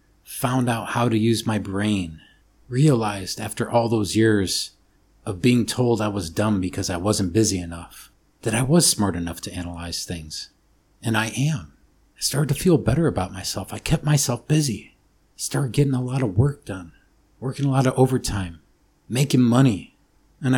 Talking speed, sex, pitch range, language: 175 wpm, male, 95-120 Hz, English